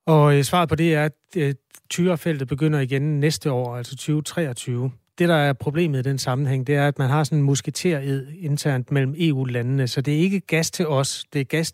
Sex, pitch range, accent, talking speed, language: male, 125-150 Hz, native, 210 wpm, Danish